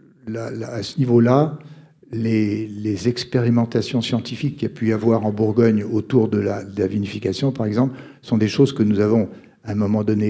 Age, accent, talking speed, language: 60-79, French, 205 wpm, French